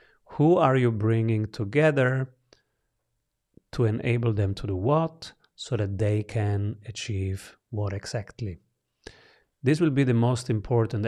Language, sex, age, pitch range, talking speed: English, male, 30-49, 105-125 Hz, 130 wpm